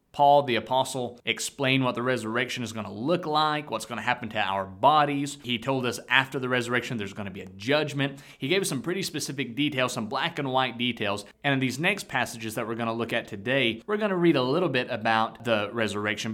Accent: American